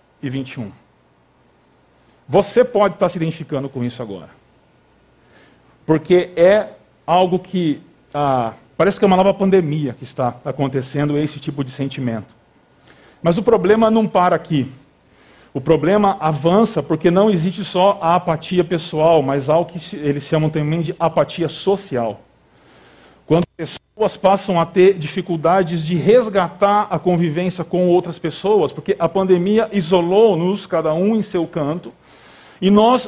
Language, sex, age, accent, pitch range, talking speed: Portuguese, male, 40-59, Brazilian, 160-215 Hz, 140 wpm